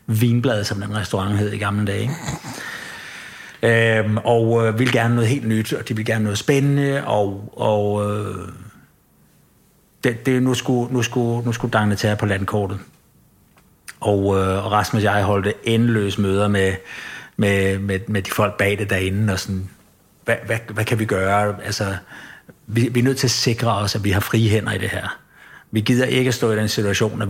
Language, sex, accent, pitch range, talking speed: English, male, Danish, 105-120 Hz, 195 wpm